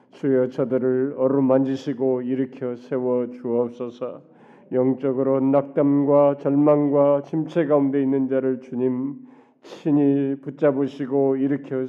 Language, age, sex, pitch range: Korean, 40-59, male, 140-160 Hz